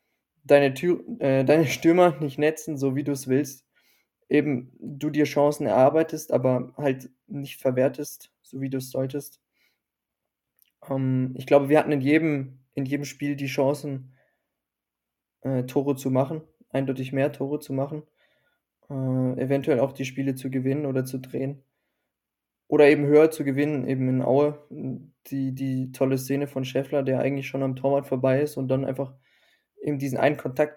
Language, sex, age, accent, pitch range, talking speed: German, male, 20-39, German, 130-145 Hz, 165 wpm